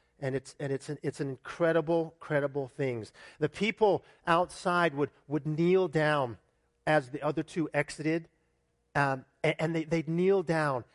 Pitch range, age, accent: 120-165 Hz, 40-59, American